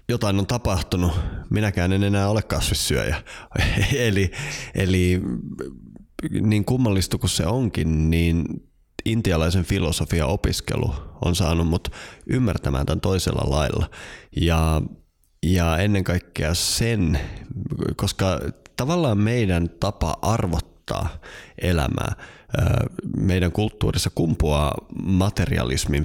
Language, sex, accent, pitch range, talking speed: Finnish, male, native, 80-95 Hz, 95 wpm